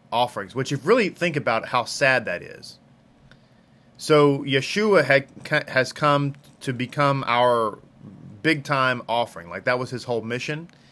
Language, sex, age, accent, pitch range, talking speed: English, male, 30-49, American, 120-160 Hz, 150 wpm